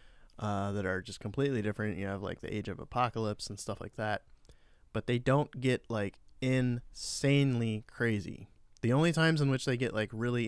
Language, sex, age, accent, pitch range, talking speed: English, male, 20-39, American, 100-125 Hz, 190 wpm